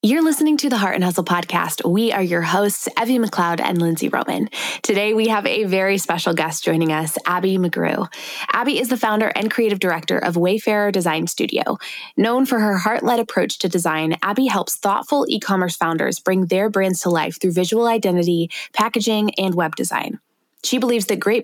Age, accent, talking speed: 20-39, American, 185 wpm